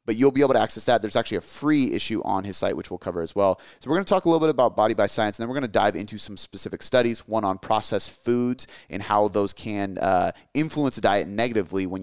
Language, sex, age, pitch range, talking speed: English, male, 30-49, 95-120 Hz, 280 wpm